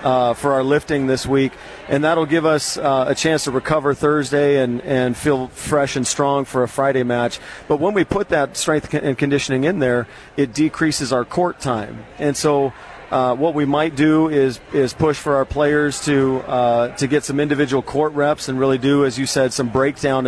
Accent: American